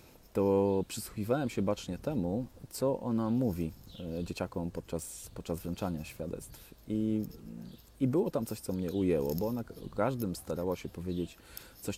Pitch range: 85-100 Hz